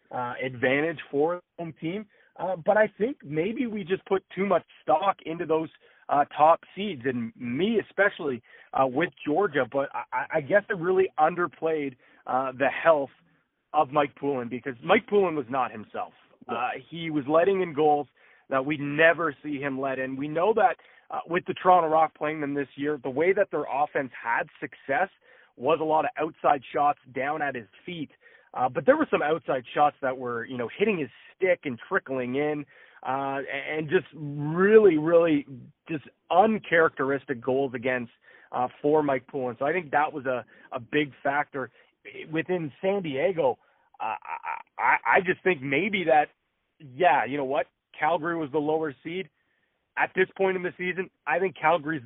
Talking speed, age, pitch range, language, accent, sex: 180 wpm, 30-49, 135-180 Hz, English, American, male